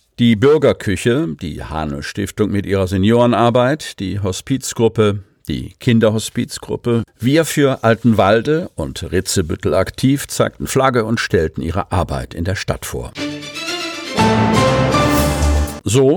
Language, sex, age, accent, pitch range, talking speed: German, male, 50-69, German, 95-125 Hz, 110 wpm